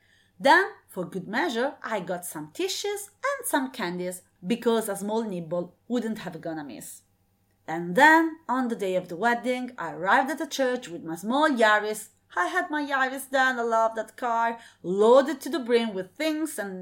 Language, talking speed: English, 185 wpm